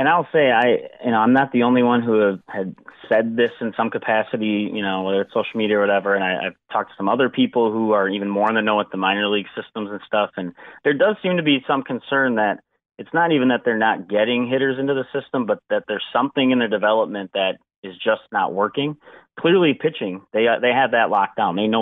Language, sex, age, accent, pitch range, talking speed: English, male, 30-49, American, 100-125 Hz, 250 wpm